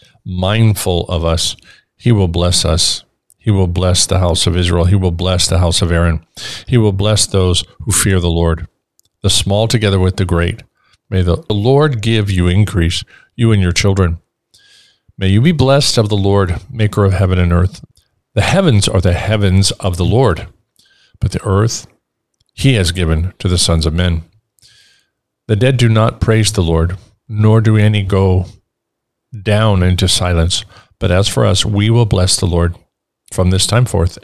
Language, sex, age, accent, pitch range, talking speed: English, male, 50-69, American, 90-110 Hz, 180 wpm